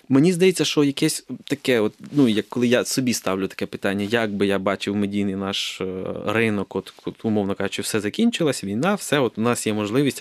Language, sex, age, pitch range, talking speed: Ukrainian, male, 20-39, 115-140 Hz, 200 wpm